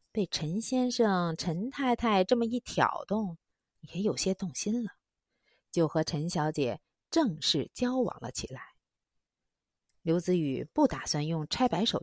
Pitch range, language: 155-225 Hz, Chinese